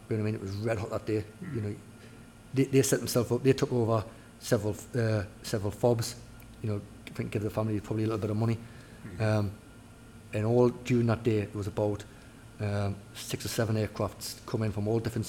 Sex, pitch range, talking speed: male, 105-115 Hz, 215 wpm